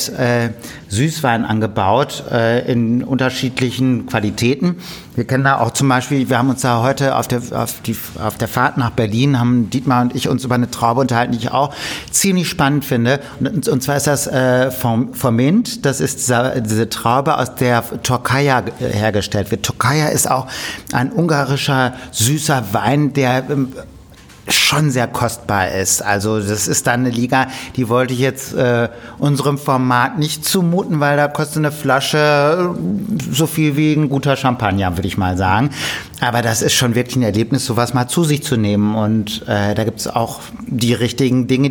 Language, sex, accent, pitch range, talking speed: German, male, German, 120-140 Hz, 180 wpm